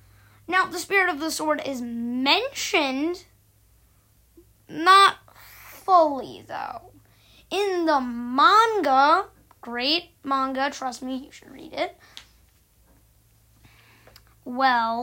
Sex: female